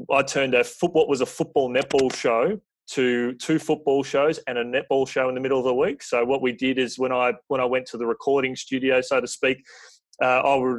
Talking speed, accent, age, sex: 245 wpm, Australian, 20-39, male